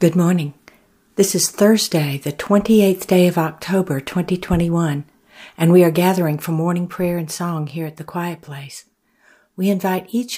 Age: 60-79